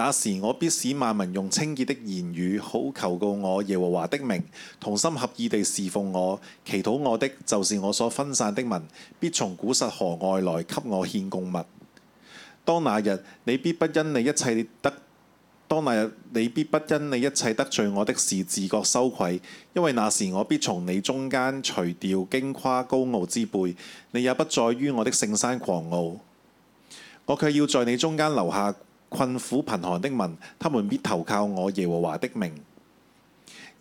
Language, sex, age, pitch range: Chinese, male, 20-39, 95-140 Hz